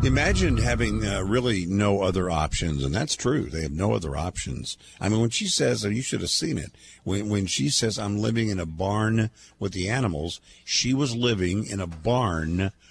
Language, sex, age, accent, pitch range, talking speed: English, male, 50-69, American, 95-120 Hz, 205 wpm